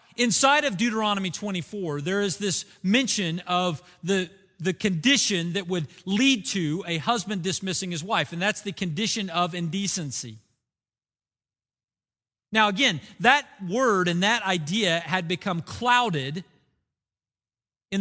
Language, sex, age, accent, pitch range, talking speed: English, male, 40-59, American, 165-230 Hz, 125 wpm